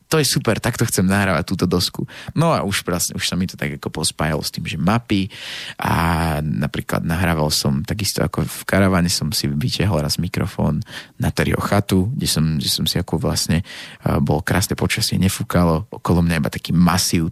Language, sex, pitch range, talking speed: Slovak, male, 85-105 Hz, 195 wpm